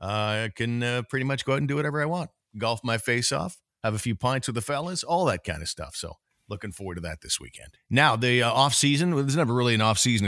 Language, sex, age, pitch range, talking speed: English, male, 50-69, 95-120 Hz, 280 wpm